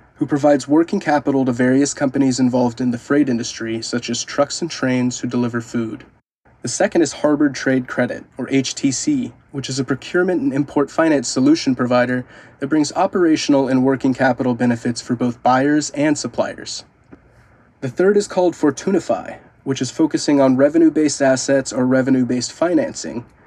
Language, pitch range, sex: English, 125-150 Hz, male